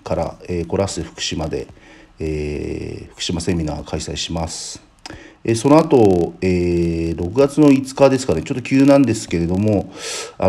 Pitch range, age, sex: 85-110 Hz, 40-59, male